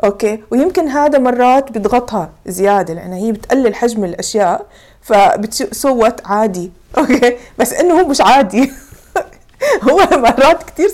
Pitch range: 205-265 Hz